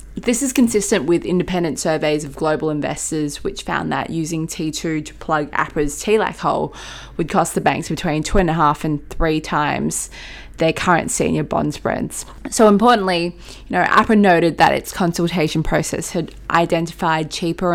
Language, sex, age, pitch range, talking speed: English, female, 20-39, 155-180 Hz, 165 wpm